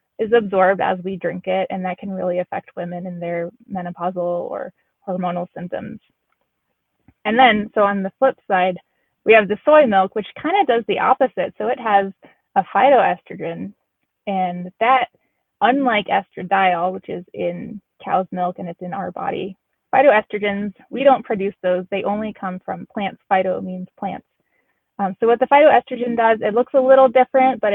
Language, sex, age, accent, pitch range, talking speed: English, female, 20-39, American, 185-240 Hz, 175 wpm